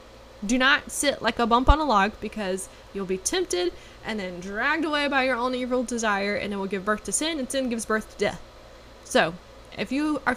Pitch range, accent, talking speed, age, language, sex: 205-250 Hz, American, 225 wpm, 10-29, English, female